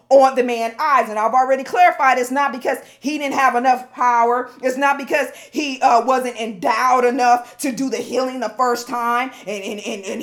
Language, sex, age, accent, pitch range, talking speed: English, female, 40-59, American, 245-300 Hz, 205 wpm